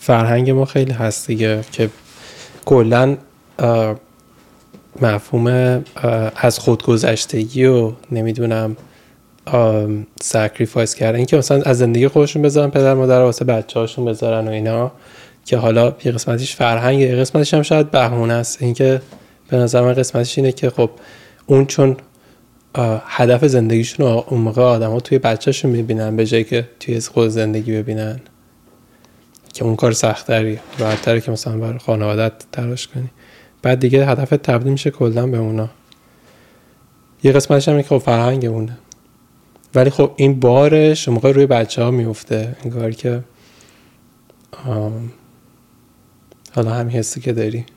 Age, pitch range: 20-39, 115-135 Hz